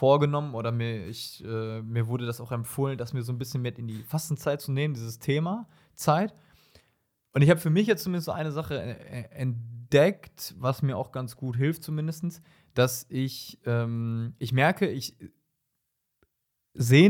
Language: German